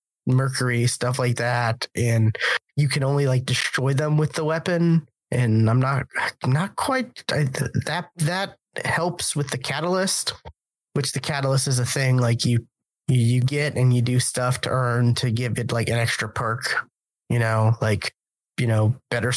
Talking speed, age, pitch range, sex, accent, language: 175 wpm, 20-39, 120-145 Hz, male, American, English